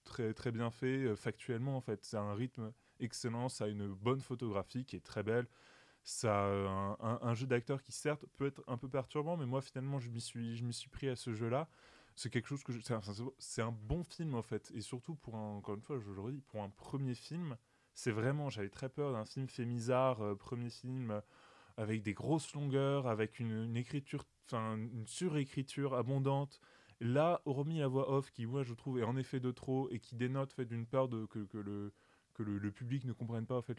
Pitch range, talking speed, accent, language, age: 110-135 Hz, 240 wpm, French, French, 20-39